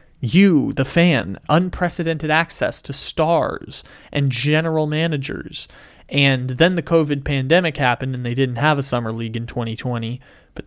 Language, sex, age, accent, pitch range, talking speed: English, male, 20-39, American, 125-155 Hz, 145 wpm